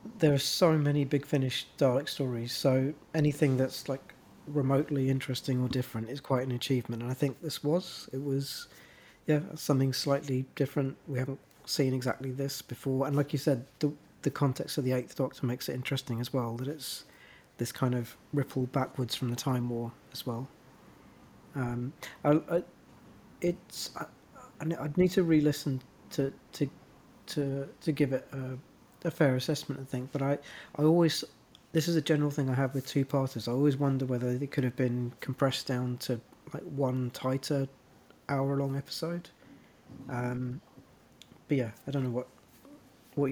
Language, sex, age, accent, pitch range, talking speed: English, male, 40-59, British, 125-145 Hz, 165 wpm